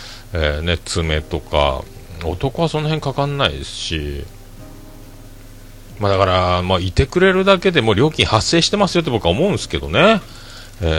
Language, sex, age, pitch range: Japanese, male, 40-59, 80-115 Hz